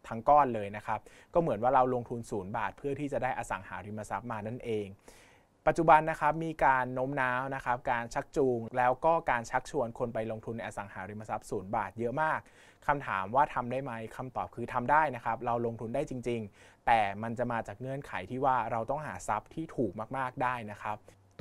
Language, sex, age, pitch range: Thai, male, 20-39, 110-135 Hz